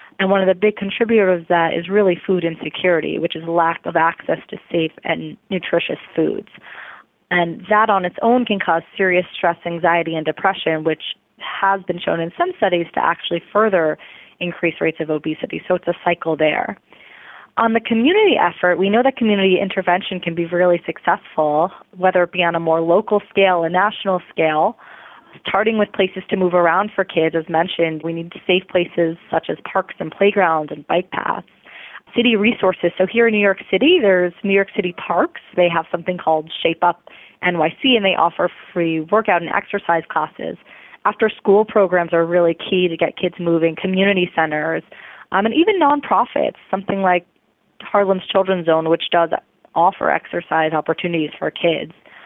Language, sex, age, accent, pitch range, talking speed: English, female, 30-49, American, 165-200 Hz, 180 wpm